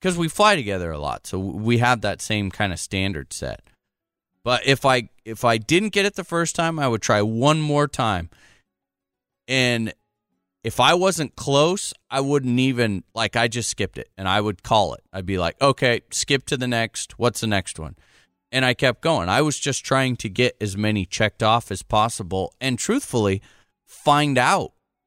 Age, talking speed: 30-49, 195 wpm